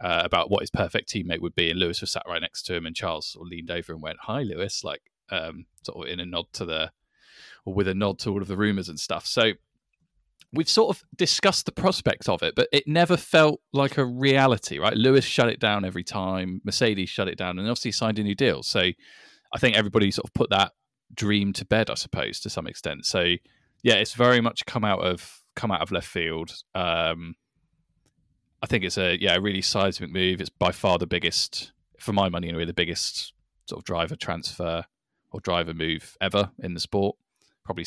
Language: English